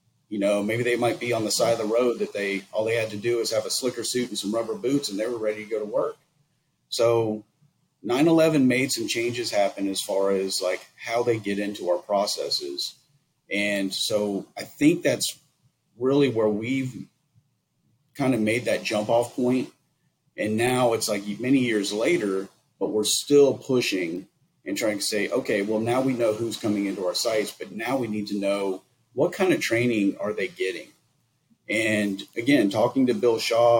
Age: 40-59